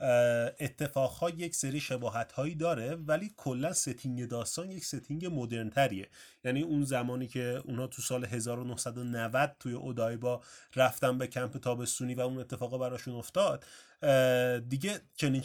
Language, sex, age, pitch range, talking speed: Persian, male, 30-49, 125-150 Hz, 140 wpm